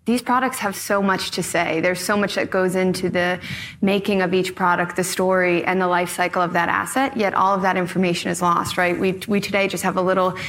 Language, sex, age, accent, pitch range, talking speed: English, female, 20-39, American, 180-200 Hz, 240 wpm